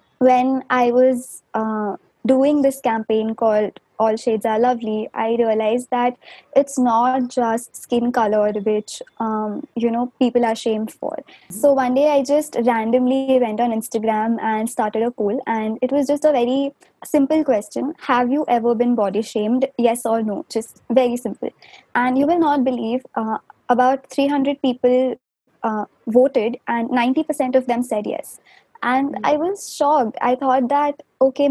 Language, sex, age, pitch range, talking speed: Hindi, female, 20-39, 230-275 Hz, 165 wpm